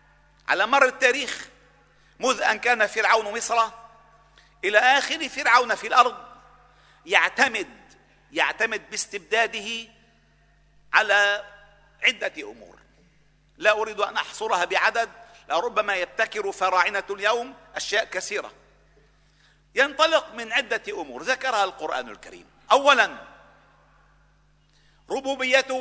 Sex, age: male, 50-69